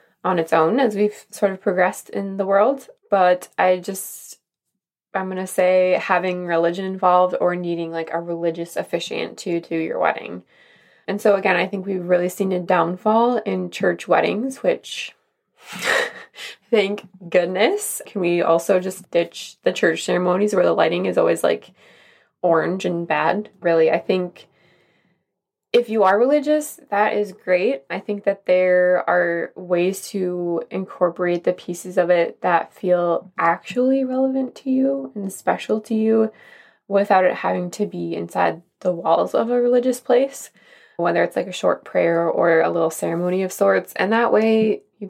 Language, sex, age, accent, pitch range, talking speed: English, female, 20-39, American, 175-210 Hz, 165 wpm